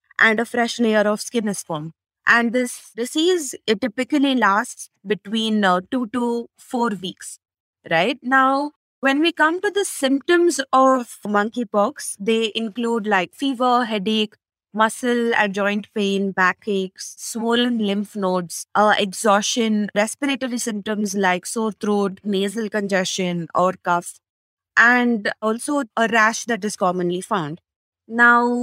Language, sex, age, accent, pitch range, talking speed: English, female, 20-39, Indian, 205-260 Hz, 130 wpm